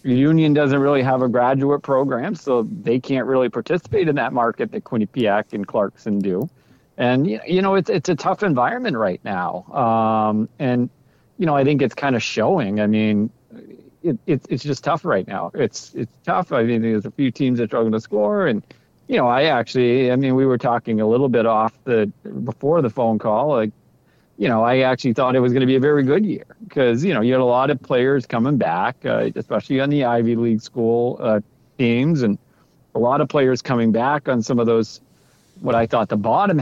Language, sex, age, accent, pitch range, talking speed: English, male, 40-59, American, 110-130 Hz, 215 wpm